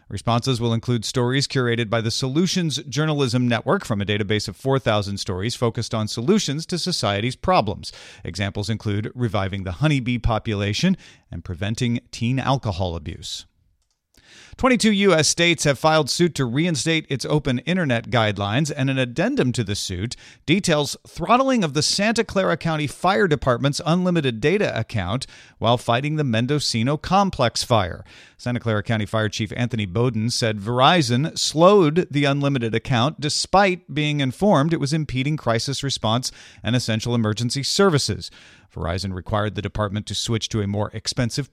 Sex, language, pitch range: male, English, 110-155 Hz